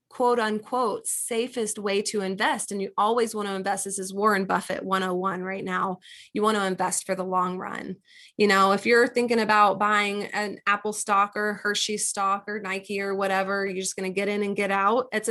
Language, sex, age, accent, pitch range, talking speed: English, female, 20-39, American, 195-230 Hz, 210 wpm